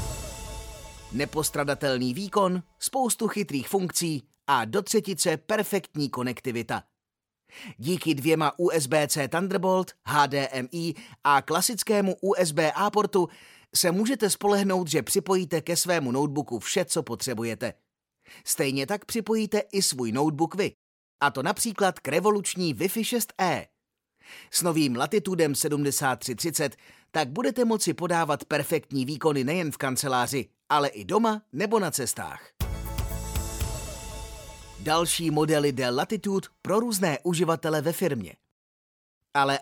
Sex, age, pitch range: male, 30-49, 140-185 Hz